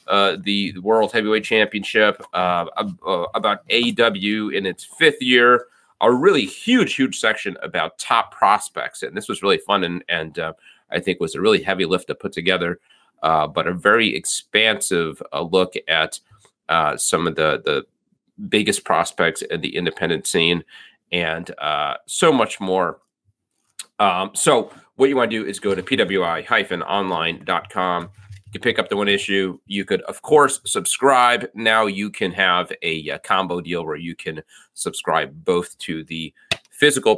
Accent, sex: American, male